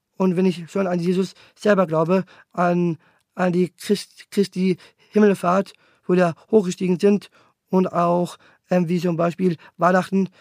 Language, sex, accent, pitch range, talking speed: German, male, German, 170-190 Hz, 145 wpm